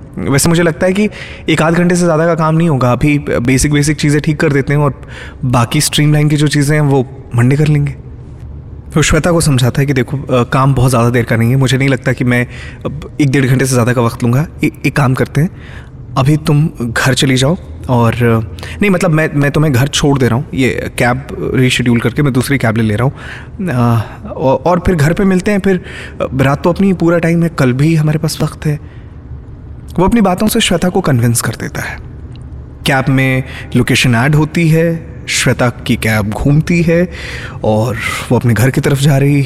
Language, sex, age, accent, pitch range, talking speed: Hindi, male, 20-39, native, 120-155 Hz, 215 wpm